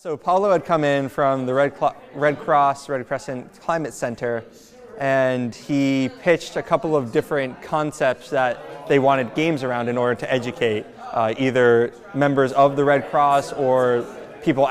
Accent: American